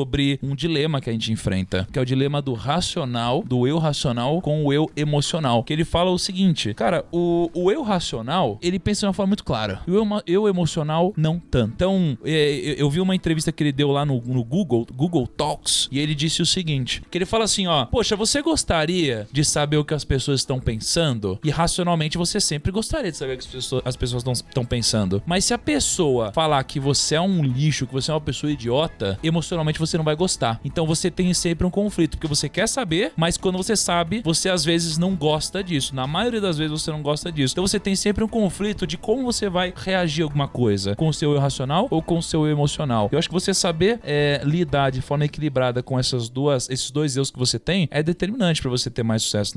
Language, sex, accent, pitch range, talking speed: Portuguese, male, Brazilian, 130-180 Hz, 235 wpm